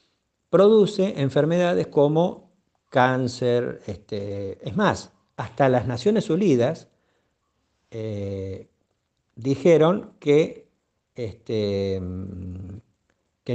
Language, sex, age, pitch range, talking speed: Spanish, male, 50-69, 110-160 Hz, 60 wpm